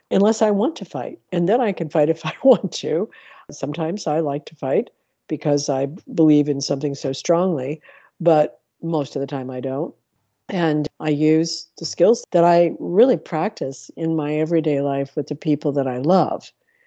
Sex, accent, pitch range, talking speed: female, American, 145-175 Hz, 185 wpm